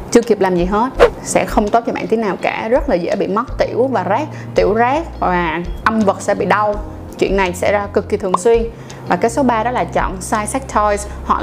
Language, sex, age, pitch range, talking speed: Vietnamese, female, 20-39, 190-240 Hz, 250 wpm